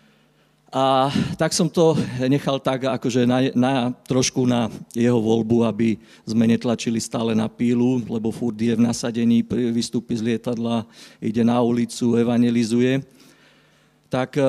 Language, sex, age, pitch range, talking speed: Slovak, male, 50-69, 115-135 Hz, 135 wpm